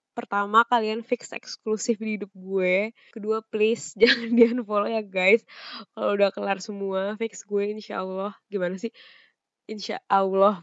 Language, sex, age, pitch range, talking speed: Indonesian, female, 10-29, 200-235 Hz, 140 wpm